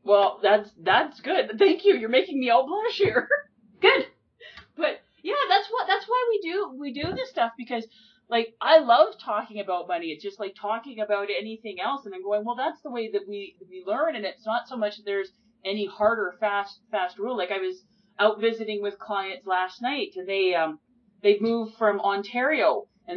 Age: 30-49